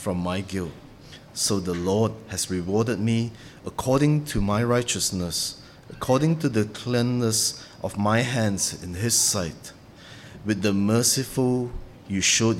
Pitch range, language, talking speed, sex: 95-120 Hz, English, 135 wpm, male